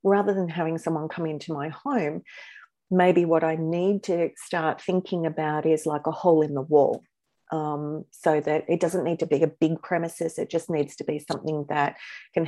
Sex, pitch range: female, 155-180 Hz